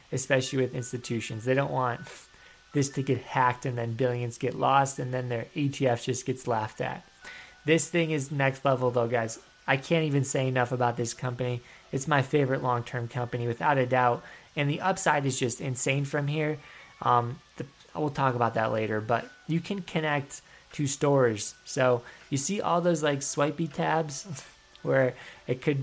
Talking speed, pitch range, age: 180 wpm, 125-150 Hz, 20-39